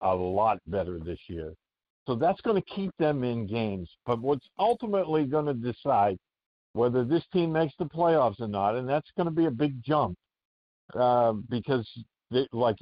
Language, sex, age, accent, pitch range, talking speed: English, male, 50-69, American, 110-145 Hz, 180 wpm